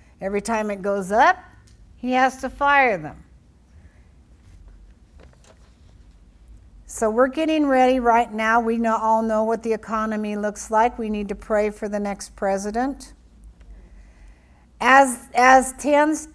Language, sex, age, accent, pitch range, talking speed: English, female, 60-79, American, 170-240 Hz, 130 wpm